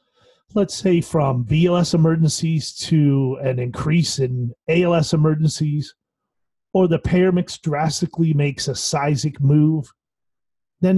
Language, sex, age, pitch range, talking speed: English, male, 40-59, 135-170 Hz, 115 wpm